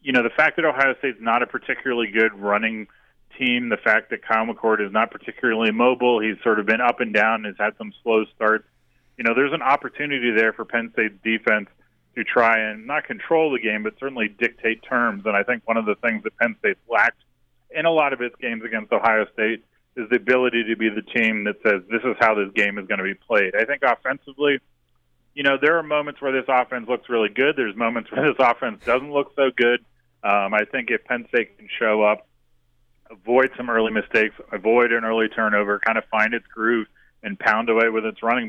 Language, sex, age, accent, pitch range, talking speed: English, male, 30-49, American, 110-125 Hz, 225 wpm